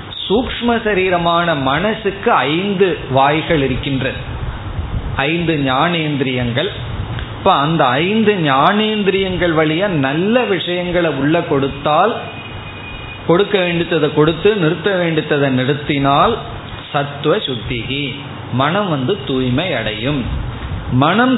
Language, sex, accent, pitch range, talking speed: Tamil, male, native, 125-165 Hz, 80 wpm